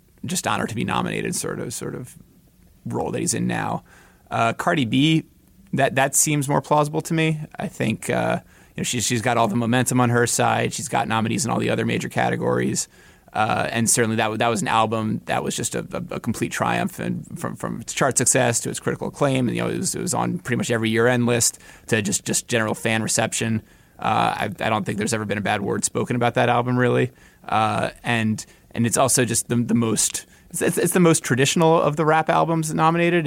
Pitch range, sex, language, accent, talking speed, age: 110-145 Hz, male, English, American, 230 wpm, 20-39